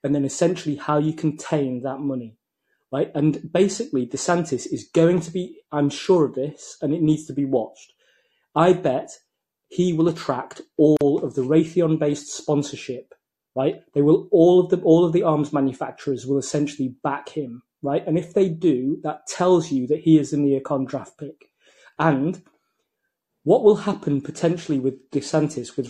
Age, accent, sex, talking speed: 30-49, British, male, 170 wpm